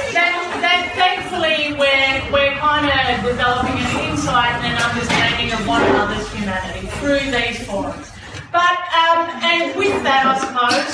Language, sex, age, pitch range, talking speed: English, female, 30-49, 210-310 Hz, 150 wpm